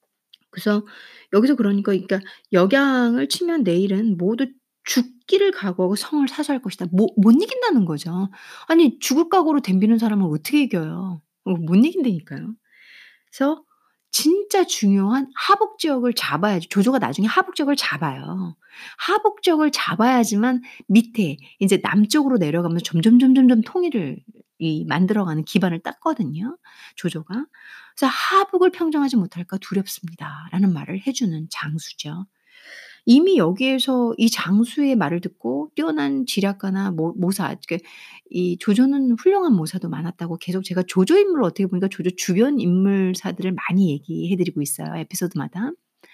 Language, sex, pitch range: Korean, female, 185-270 Hz